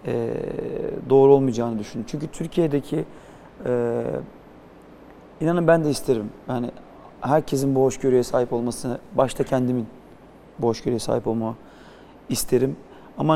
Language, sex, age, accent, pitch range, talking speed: Turkish, male, 40-59, native, 125-150 Hz, 110 wpm